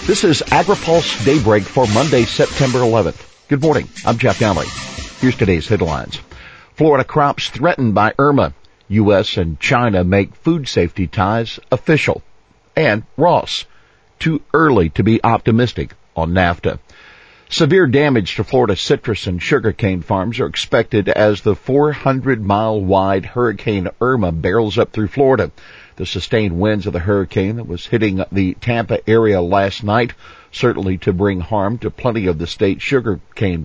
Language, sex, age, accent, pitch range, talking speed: English, male, 50-69, American, 95-115 Hz, 145 wpm